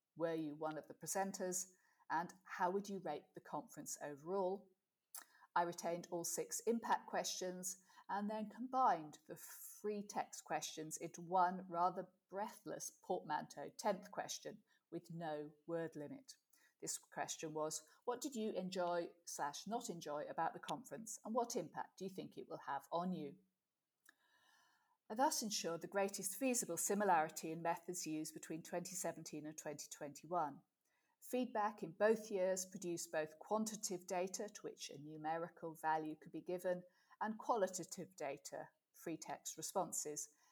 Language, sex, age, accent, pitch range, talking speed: English, female, 50-69, British, 165-205 Hz, 145 wpm